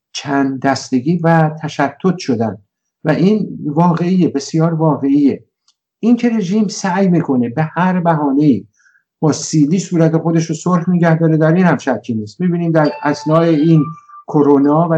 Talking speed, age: 150 wpm, 50-69